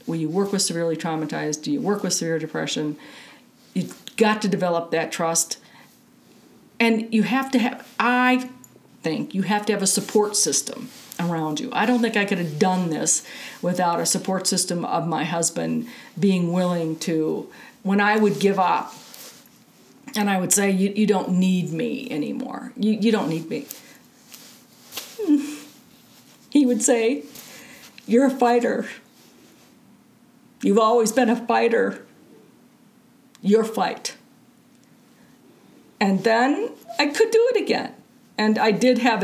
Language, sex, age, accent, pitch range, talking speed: English, female, 50-69, American, 180-245 Hz, 145 wpm